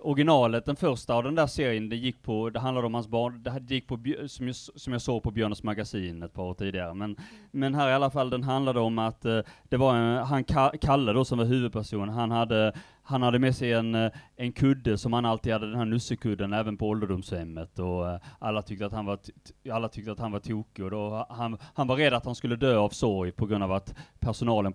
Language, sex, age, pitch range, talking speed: Swedish, male, 30-49, 105-135 Hz, 230 wpm